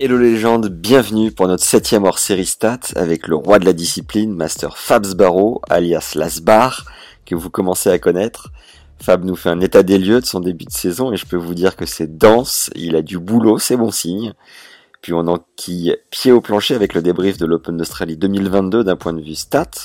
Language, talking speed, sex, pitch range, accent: French, 220 wpm, male, 85-105 Hz, French